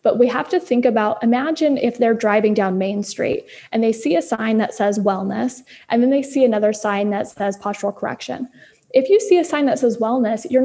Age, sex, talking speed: 20-39, female, 225 wpm